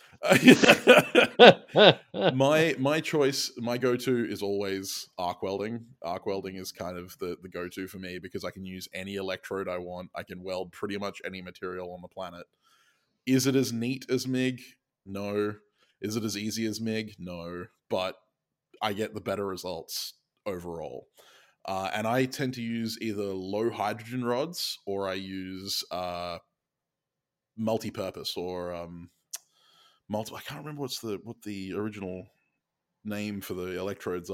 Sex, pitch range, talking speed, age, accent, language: male, 90-115 Hz, 155 wpm, 20-39, Australian, English